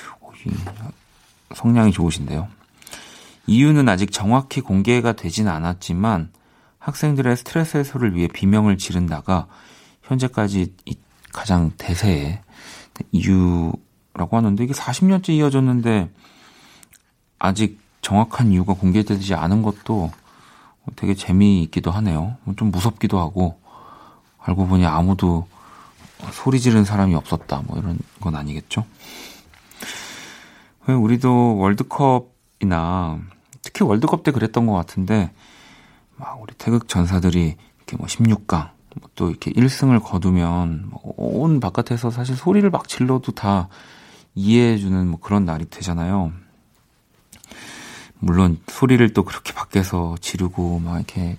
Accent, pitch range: native, 90-120 Hz